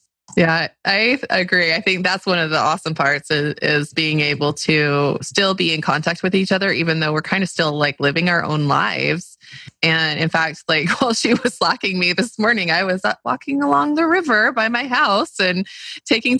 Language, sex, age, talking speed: English, female, 20-39, 205 wpm